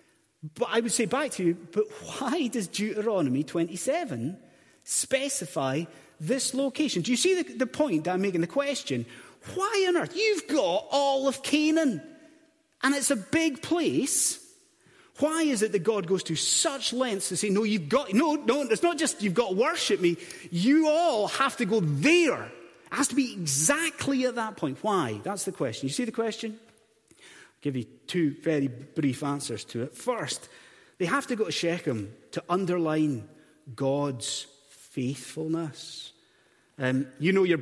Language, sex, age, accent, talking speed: English, male, 30-49, British, 170 wpm